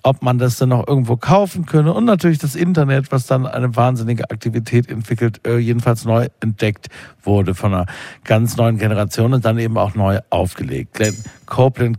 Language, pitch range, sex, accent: German, 110-145 Hz, male, German